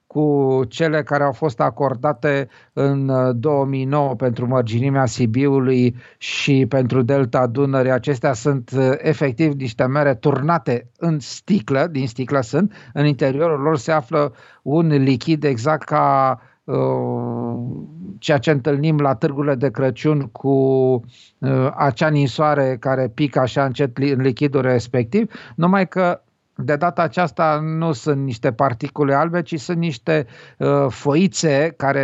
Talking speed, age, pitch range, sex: 130 wpm, 50-69, 130-160 Hz, male